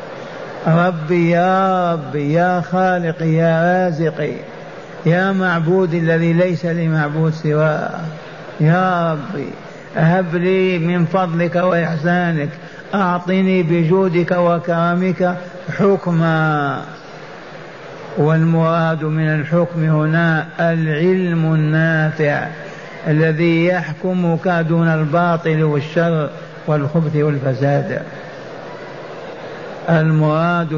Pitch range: 155-175 Hz